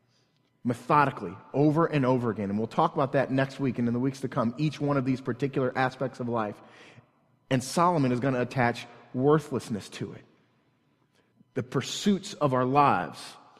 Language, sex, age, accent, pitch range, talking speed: English, male, 30-49, American, 120-155 Hz, 175 wpm